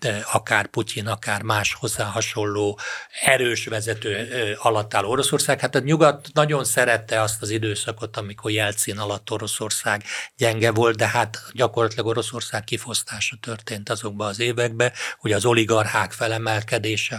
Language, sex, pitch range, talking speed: Hungarian, male, 105-120 Hz, 130 wpm